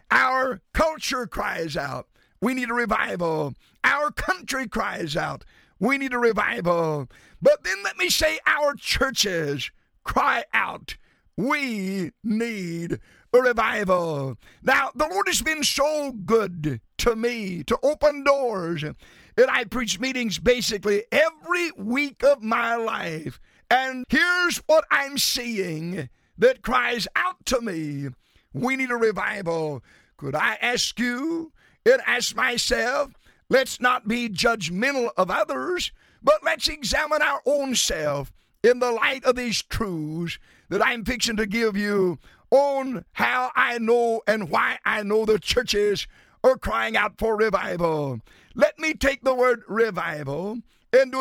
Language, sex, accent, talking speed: English, male, American, 140 wpm